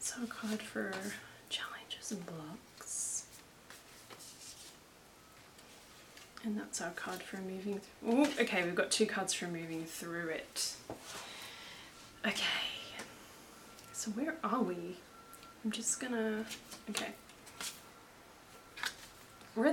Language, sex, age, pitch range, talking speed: English, female, 20-39, 210-300 Hz, 100 wpm